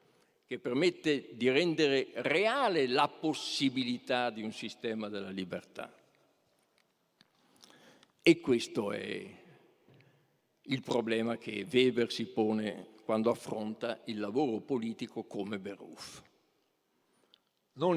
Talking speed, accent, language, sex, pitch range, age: 95 wpm, native, Italian, male, 110-130 Hz, 60-79